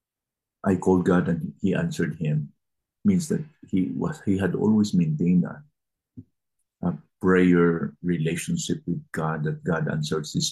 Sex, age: male, 50-69